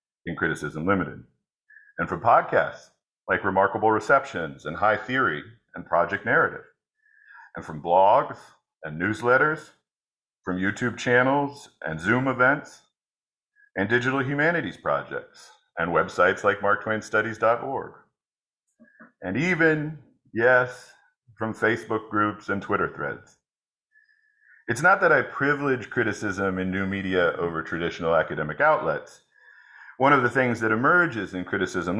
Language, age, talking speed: English, 50-69, 120 wpm